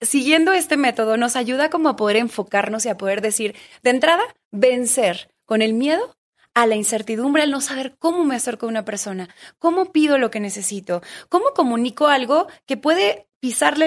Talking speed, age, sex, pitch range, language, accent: 180 wpm, 30-49, female, 220-275 Hz, Spanish, Mexican